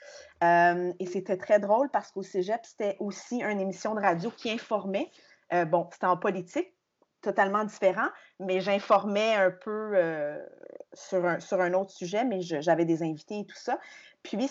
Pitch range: 185-230 Hz